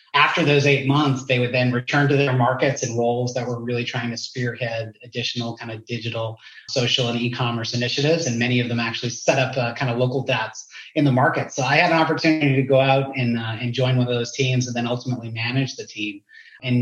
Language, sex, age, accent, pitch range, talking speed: English, male, 30-49, American, 120-140 Hz, 230 wpm